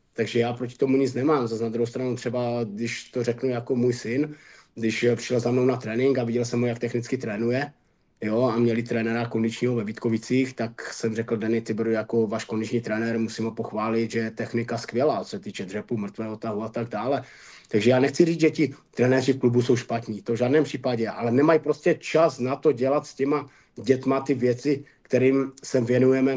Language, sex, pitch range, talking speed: Czech, male, 115-135 Hz, 205 wpm